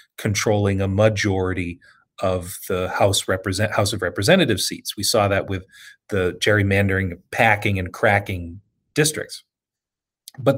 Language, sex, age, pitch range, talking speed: English, male, 30-49, 105-145 Hz, 120 wpm